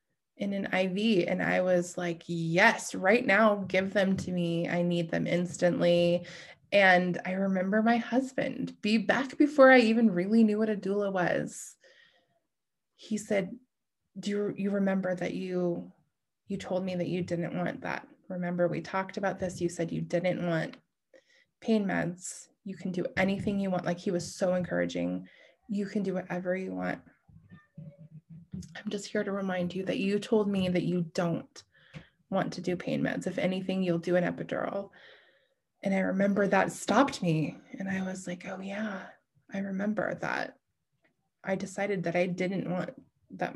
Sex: female